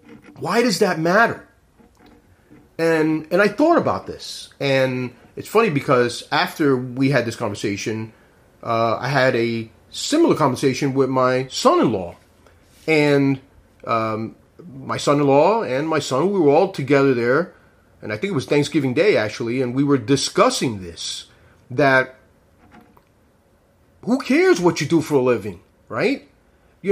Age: 30-49